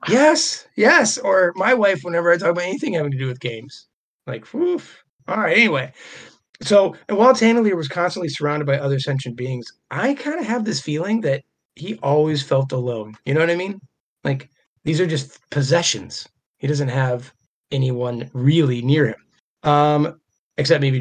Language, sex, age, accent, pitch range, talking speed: English, male, 30-49, American, 135-185 Hz, 175 wpm